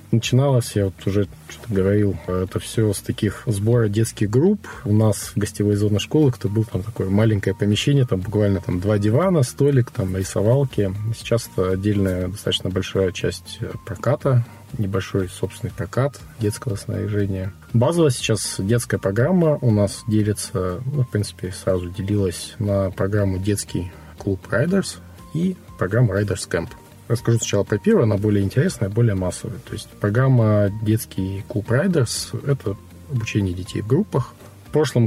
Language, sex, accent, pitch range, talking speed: Russian, male, native, 95-115 Hz, 150 wpm